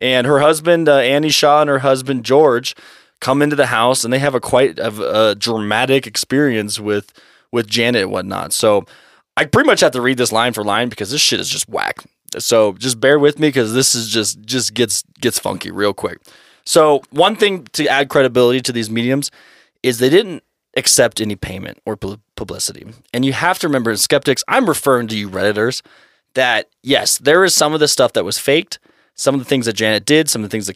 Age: 20-39